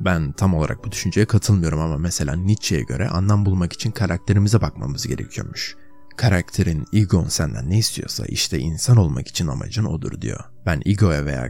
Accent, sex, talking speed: native, male, 160 wpm